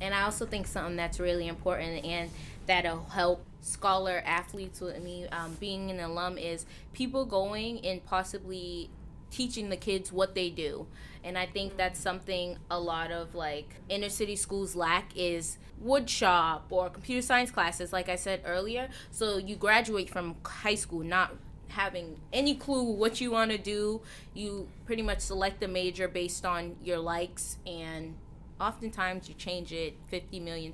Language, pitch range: English, 175-200 Hz